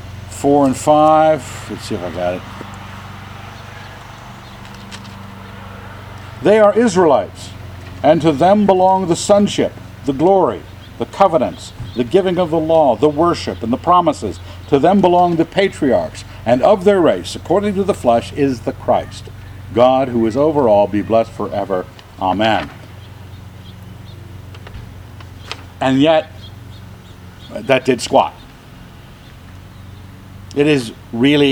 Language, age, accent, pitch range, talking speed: English, 60-79, American, 100-145 Hz, 125 wpm